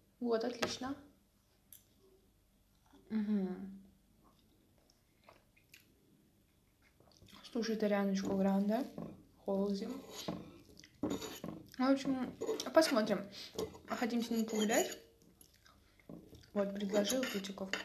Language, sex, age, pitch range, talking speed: Russian, female, 20-39, 185-220 Hz, 55 wpm